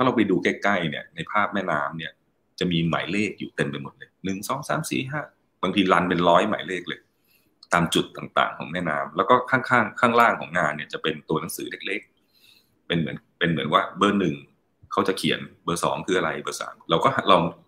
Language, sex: Thai, male